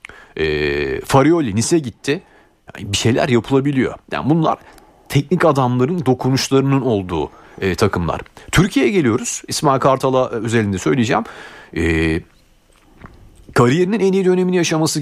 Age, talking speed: 40-59, 110 wpm